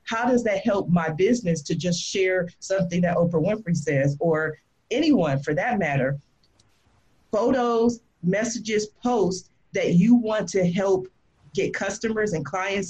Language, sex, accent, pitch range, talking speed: English, female, American, 175-220 Hz, 145 wpm